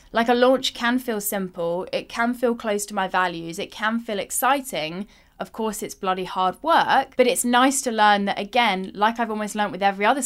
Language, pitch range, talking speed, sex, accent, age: English, 205-260 Hz, 215 wpm, female, British, 10-29